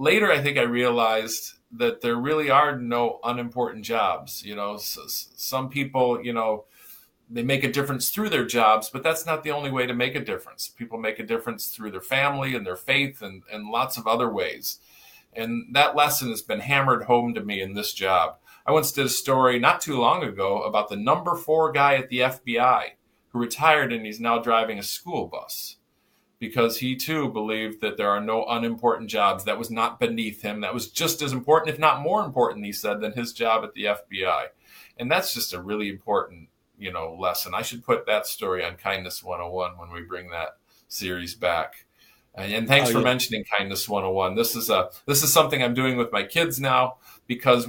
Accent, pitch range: American, 110-135 Hz